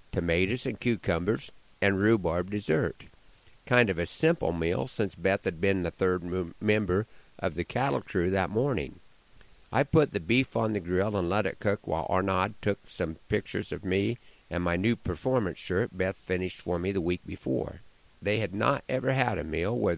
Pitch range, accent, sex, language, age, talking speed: 90-120 Hz, American, male, English, 50-69, 190 wpm